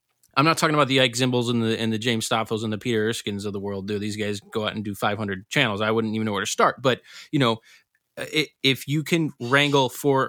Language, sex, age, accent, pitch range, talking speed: English, male, 20-39, American, 110-130 Hz, 250 wpm